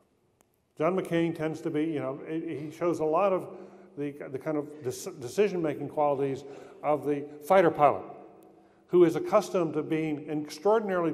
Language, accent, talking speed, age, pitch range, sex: English, American, 155 wpm, 50-69, 140-180 Hz, male